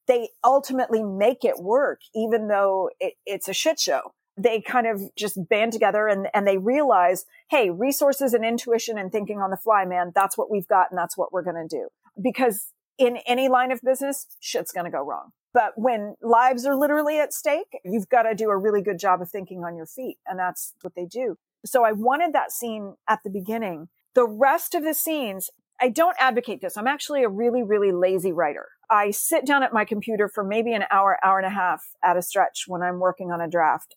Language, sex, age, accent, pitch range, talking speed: English, female, 40-59, American, 185-245 Hz, 220 wpm